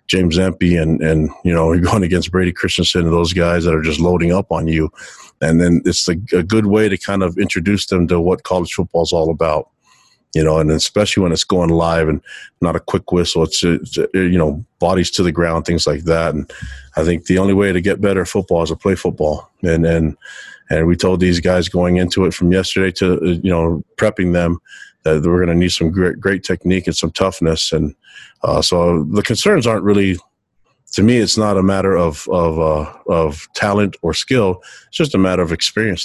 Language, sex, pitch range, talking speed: English, male, 85-95 Hz, 225 wpm